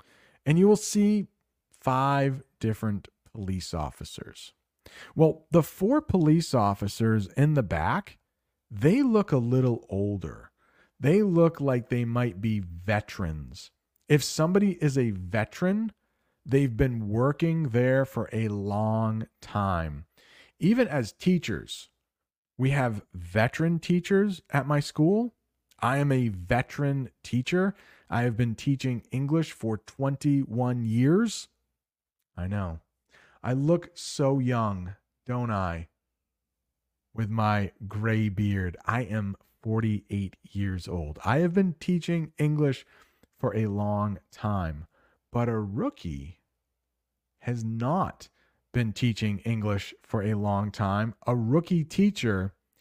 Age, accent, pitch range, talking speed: 40-59, American, 100-140 Hz, 120 wpm